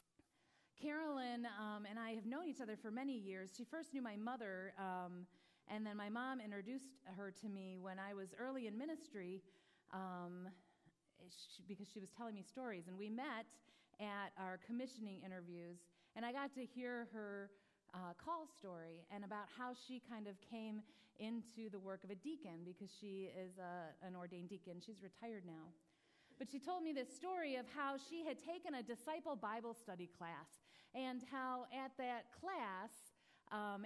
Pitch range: 190-245 Hz